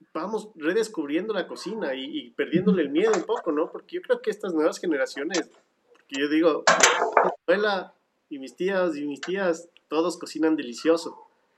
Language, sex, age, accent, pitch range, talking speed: English, male, 40-59, Mexican, 150-200 Hz, 170 wpm